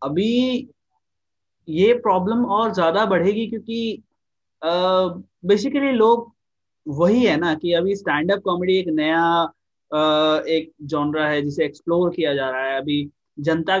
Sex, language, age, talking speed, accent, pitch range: male, Hindi, 20-39, 145 wpm, native, 145-195 Hz